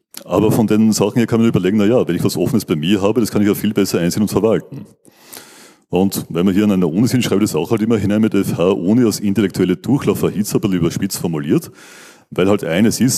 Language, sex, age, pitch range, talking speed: German, male, 40-59, 95-115 Hz, 245 wpm